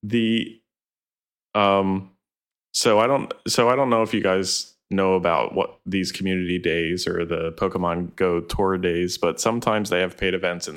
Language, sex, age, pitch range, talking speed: English, male, 20-39, 90-105 Hz, 175 wpm